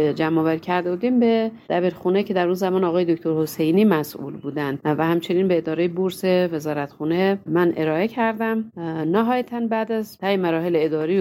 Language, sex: Persian, female